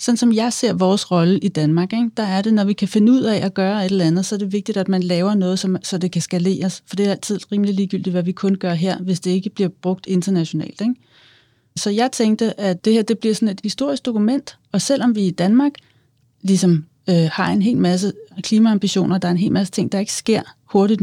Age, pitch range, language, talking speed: 30-49, 185-225 Hz, Danish, 250 wpm